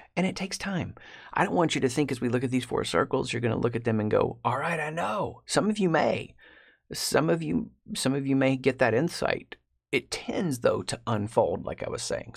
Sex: male